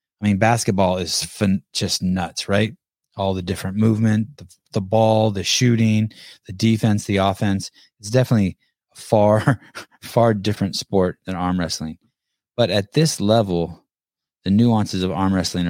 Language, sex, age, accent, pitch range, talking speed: English, male, 20-39, American, 90-110 Hz, 155 wpm